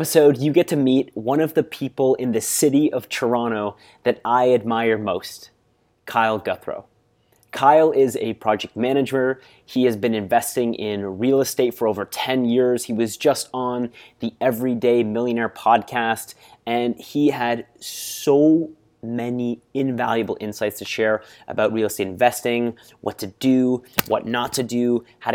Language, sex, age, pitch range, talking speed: English, male, 30-49, 110-130 Hz, 155 wpm